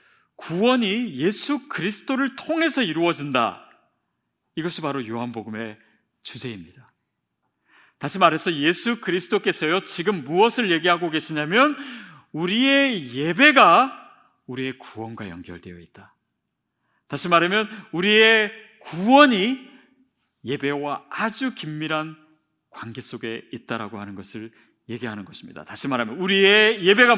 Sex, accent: male, native